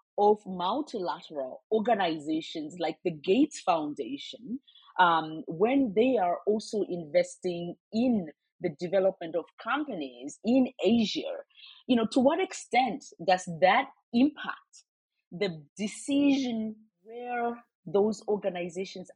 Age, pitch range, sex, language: 30-49, 165-235 Hz, female, English